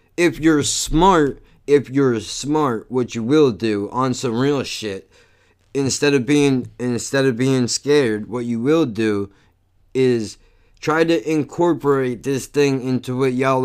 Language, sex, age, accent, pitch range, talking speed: English, male, 20-39, American, 115-150 Hz, 150 wpm